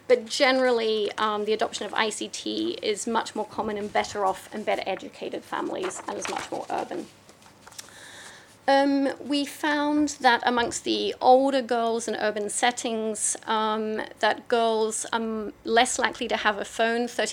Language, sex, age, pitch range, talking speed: English, female, 30-49, 215-255 Hz, 145 wpm